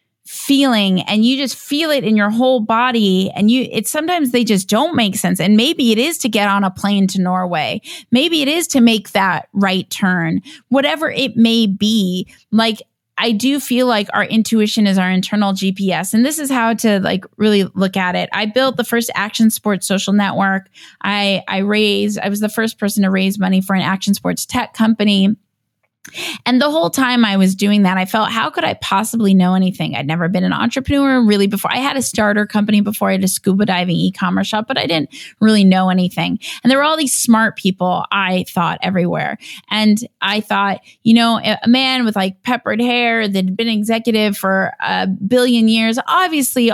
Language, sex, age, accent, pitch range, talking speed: English, female, 20-39, American, 195-250 Hz, 205 wpm